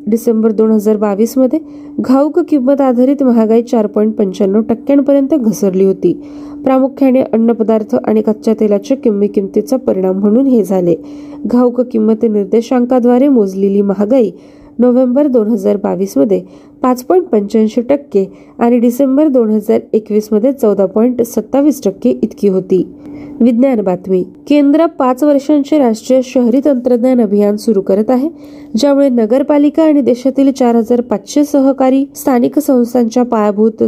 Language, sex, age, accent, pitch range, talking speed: Marathi, female, 30-49, native, 215-270 Hz, 80 wpm